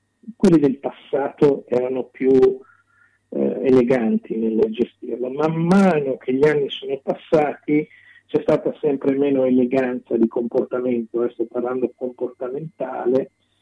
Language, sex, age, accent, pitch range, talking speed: Italian, male, 40-59, native, 120-150 Hz, 120 wpm